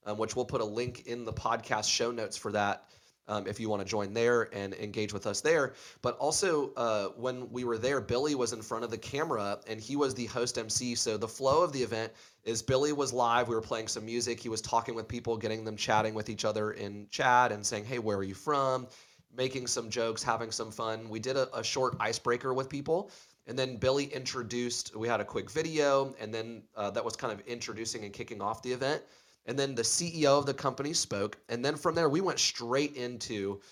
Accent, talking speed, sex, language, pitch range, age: American, 235 wpm, male, English, 110-130 Hz, 30-49